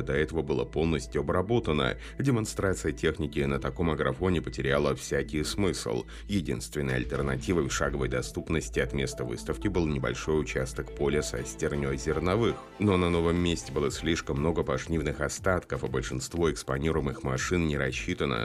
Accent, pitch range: native, 70-95 Hz